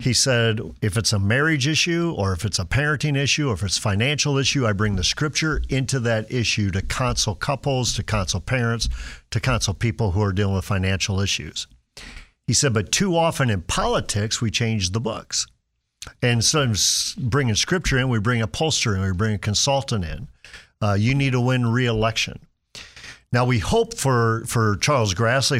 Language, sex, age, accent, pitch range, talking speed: English, male, 50-69, American, 105-130 Hz, 190 wpm